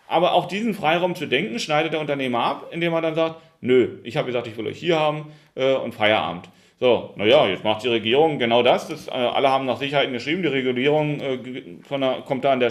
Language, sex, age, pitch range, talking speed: German, male, 40-59, 125-155 Hz, 235 wpm